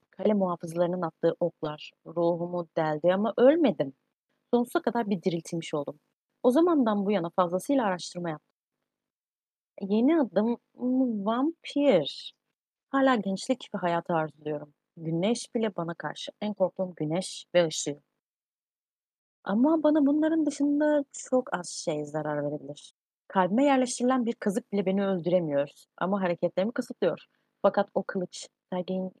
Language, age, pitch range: Turkish, 30-49, 170-220 Hz